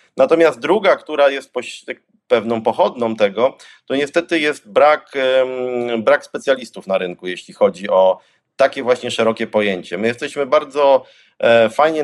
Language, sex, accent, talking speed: Polish, male, native, 130 wpm